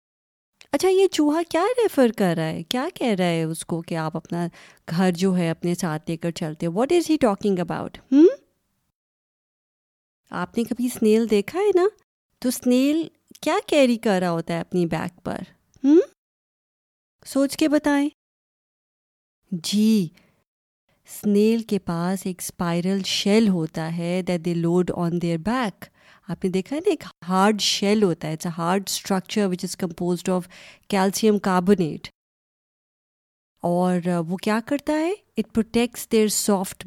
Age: 30-49